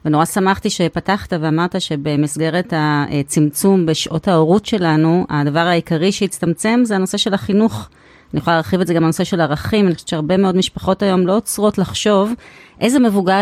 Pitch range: 160-195 Hz